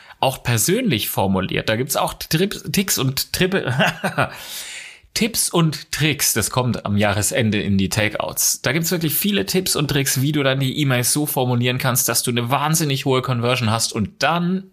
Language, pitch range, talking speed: German, 110-150 Hz, 185 wpm